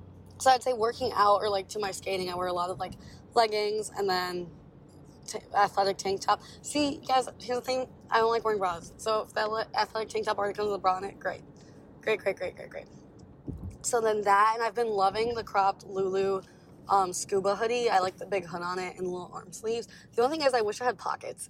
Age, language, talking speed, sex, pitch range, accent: 20-39, English, 240 wpm, female, 185-235 Hz, American